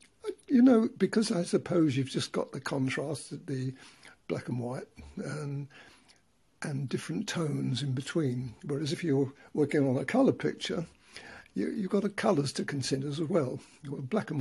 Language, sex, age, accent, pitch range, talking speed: English, male, 60-79, British, 140-190 Hz, 170 wpm